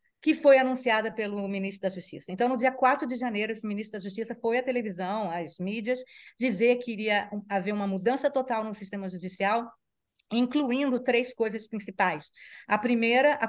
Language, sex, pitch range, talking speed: Portuguese, female, 200-245 Hz, 175 wpm